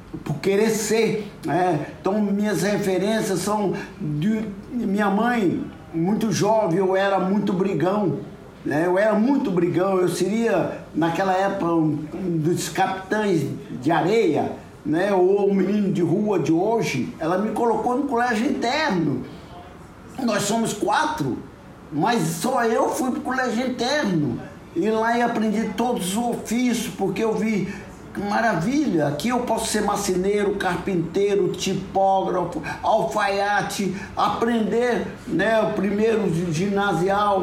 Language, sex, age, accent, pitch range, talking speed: Portuguese, male, 60-79, Brazilian, 185-225 Hz, 130 wpm